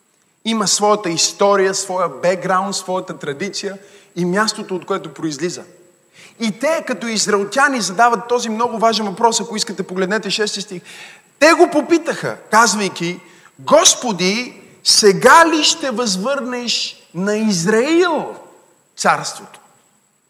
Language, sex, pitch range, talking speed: Bulgarian, male, 195-265 Hz, 110 wpm